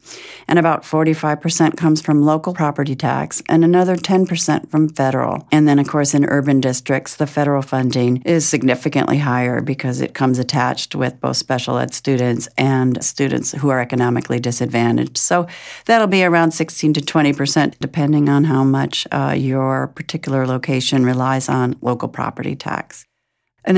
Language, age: English, 50-69